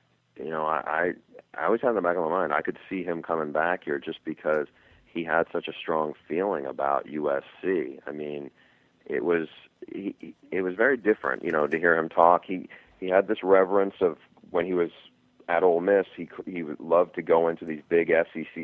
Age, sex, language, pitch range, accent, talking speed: 40-59, male, English, 75-90 Hz, American, 215 wpm